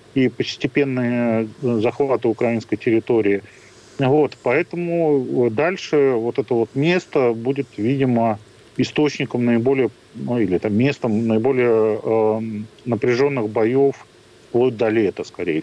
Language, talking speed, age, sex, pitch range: Russian, 85 wpm, 40-59, male, 115-135 Hz